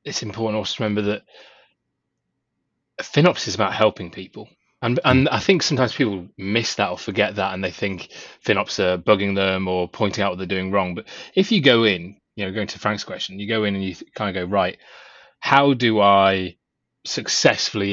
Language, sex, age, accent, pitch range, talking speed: English, male, 20-39, British, 95-125 Hz, 200 wpm